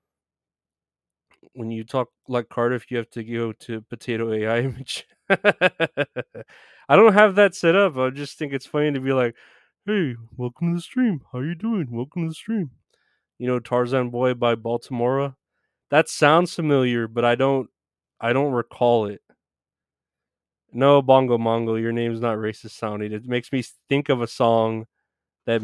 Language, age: English, 20-39